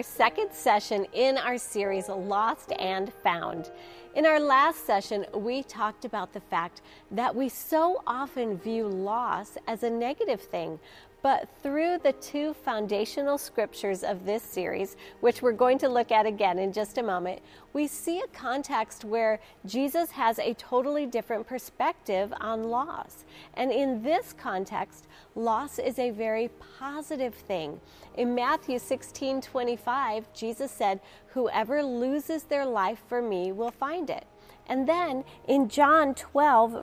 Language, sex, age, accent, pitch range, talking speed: English, female, 40-59, American, 215-280 Hz, 145 wpm